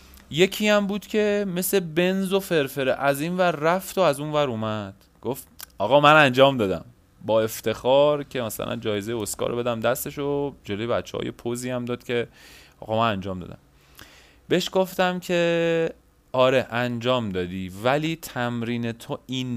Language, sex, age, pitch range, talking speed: Persian, male, 30-49, 90-125 Hz, 155 wpm